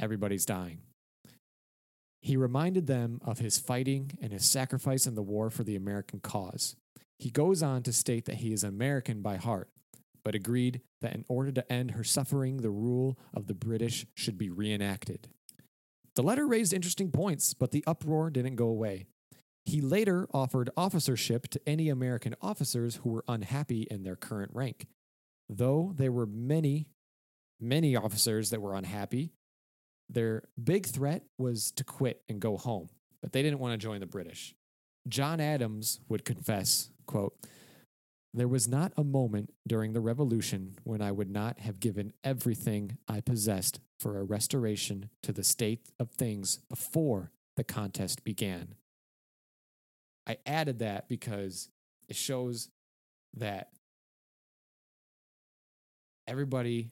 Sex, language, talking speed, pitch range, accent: male, English, 150 wpm, 105-135 Hz, American